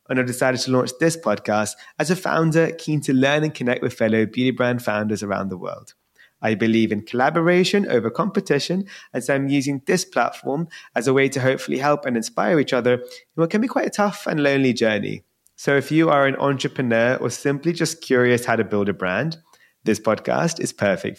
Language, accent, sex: English, British, male